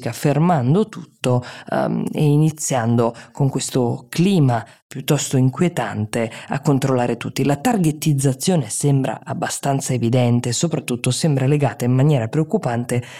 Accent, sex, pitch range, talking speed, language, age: native, female, 125-160 Hz, 105 wpm, Italian, 20-39